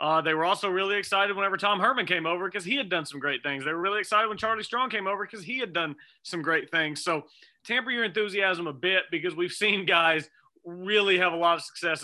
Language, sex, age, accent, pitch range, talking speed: English, male, 30-49, American, 150-195 Hz, 250 wpm